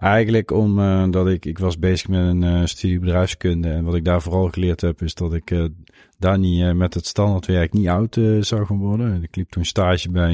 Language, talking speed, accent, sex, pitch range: Dutch, 205 wpm, Dutch, male, 90-105 Hz